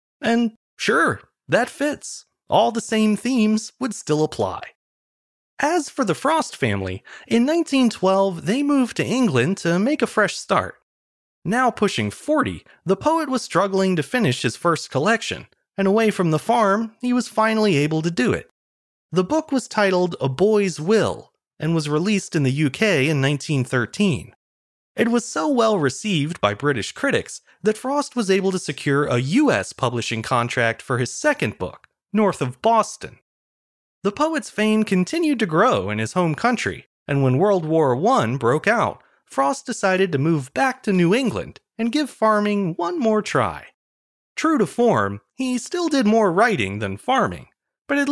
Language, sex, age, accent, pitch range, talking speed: English, male, 30-49, American, 145-235 Hz, 165 wpm